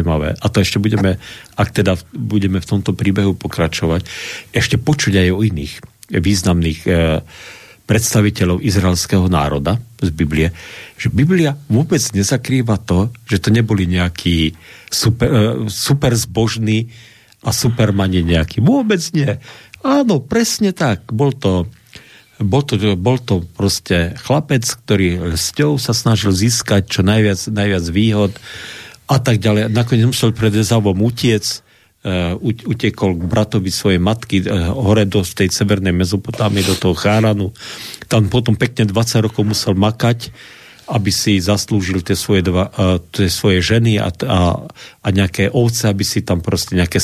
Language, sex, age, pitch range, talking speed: Slovak, male, 50-69, 95-120 Hz, 135 wpm